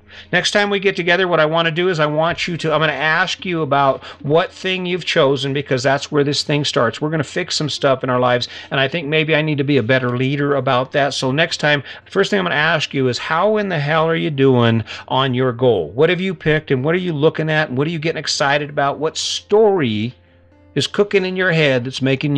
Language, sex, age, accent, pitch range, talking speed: English, male, 50-69, American, 130-165 Hz, 270 wpm